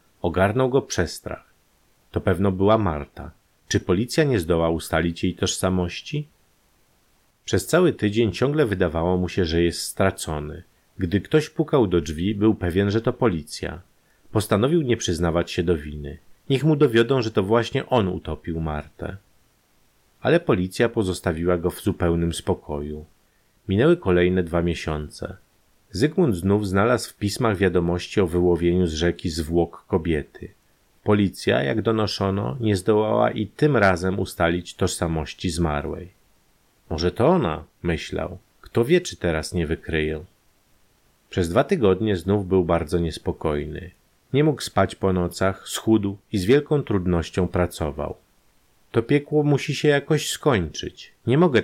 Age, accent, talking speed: 40-59, native, 140 wpm